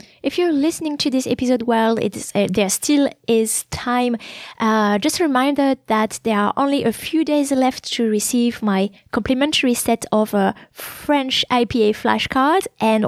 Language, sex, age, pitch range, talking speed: English, female, 20-39, 215-275 Hz, 160 wpm